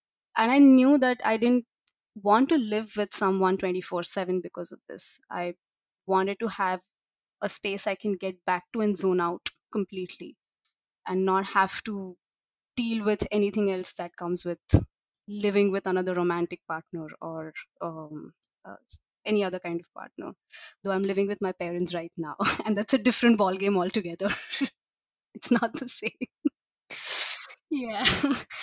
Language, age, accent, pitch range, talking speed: English, 20-39, Indian, 180-220 Hz, 155 wpm